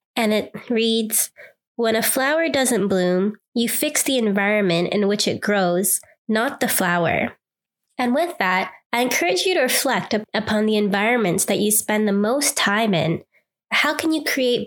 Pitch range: 200-250 Hz